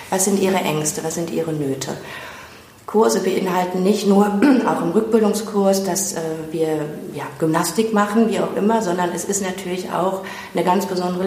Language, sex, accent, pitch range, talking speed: German, female, German, 170-205 Hz, 160 wpm